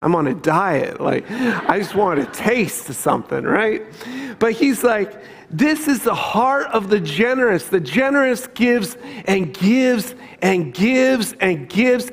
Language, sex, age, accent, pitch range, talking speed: English, male, 40-59, American, 200-250 Hz, 160 wpm